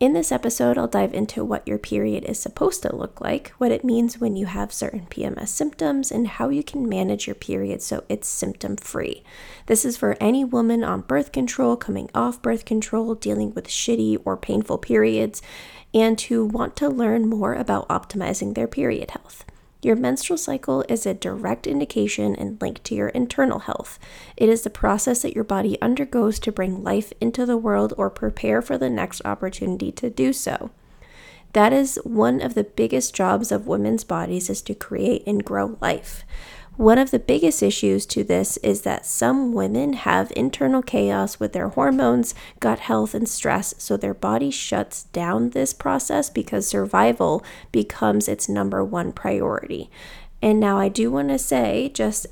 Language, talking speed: English, 180 wpm